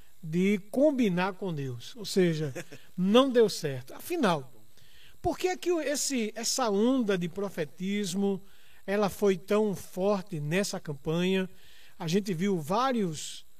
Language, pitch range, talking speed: Portuguese, 175-220 Hz, 120 wpm